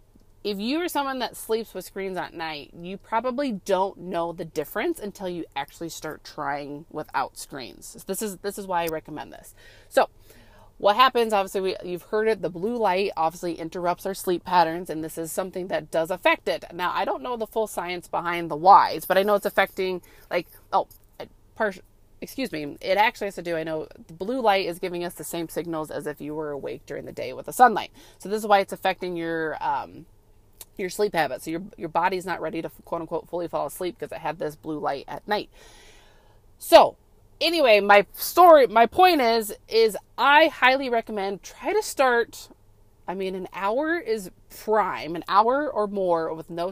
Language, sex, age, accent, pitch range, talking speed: English, female, 30-49, American, 170-220 Hz, 205 wpm